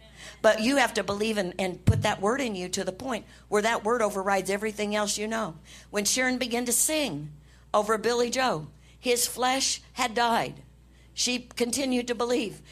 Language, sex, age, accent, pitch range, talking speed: English, female, 60-79, American, 175-245 Hz, 185 wpm